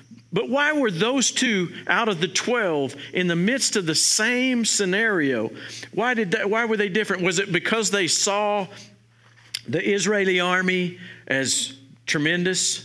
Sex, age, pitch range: male, 50-69, 135-205 Hz